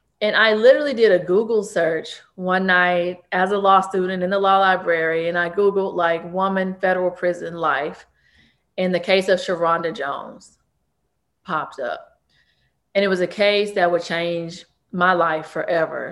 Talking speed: 165 wpm